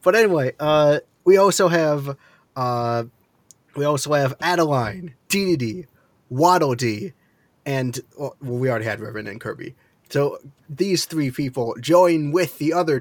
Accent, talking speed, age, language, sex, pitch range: American, 145 wpm, 20-39, English, male, 125-160 Hz